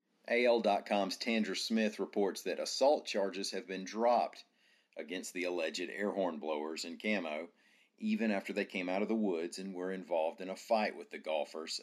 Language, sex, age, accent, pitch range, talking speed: English, male, 40-59, American, 80-110 Hz, 180 wpm